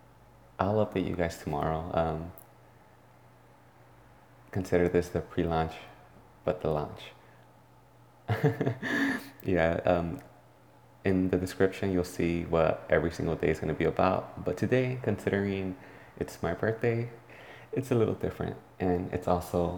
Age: 30-49